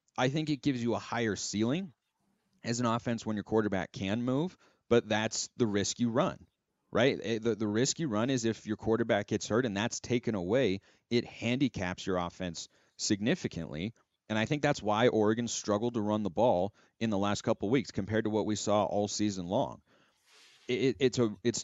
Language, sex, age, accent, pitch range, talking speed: English, male, 30-49, American, 100-125 Hz, 200 wpm